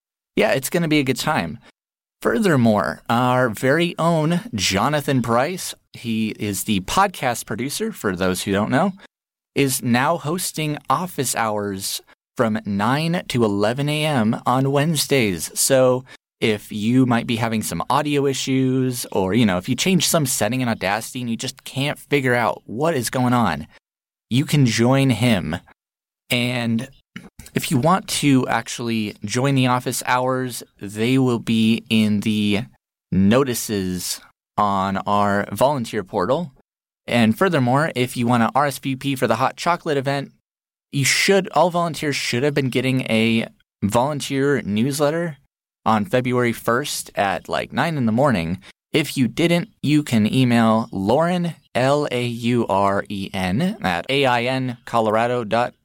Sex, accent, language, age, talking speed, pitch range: male, American, English, 30-49, 150 wpm, 110-140 Hz